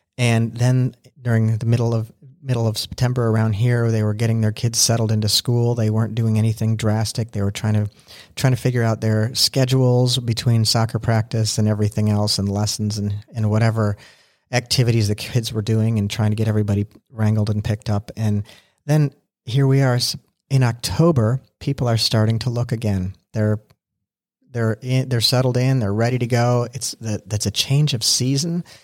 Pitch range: 105-120 Hz